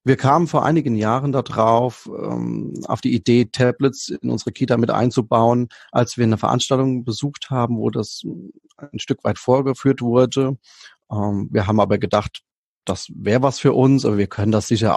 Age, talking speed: 30-49, 170 wpm